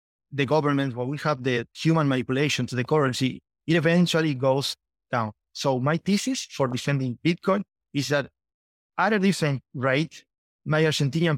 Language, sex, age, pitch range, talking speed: English, male, 30-49, 130-160 Hz, 155 wpm